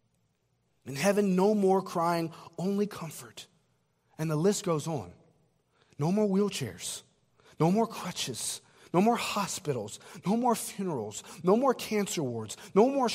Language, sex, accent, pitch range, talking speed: English, male, American, 125-200 Hz, 135 wpm